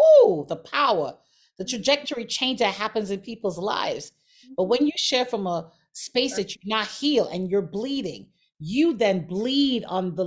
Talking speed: 170 wpm